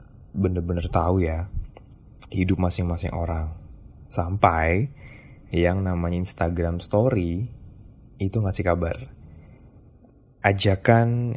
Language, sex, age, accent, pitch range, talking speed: Indonesian, male, 20-39, native, 85-110 Hz, 80 wpm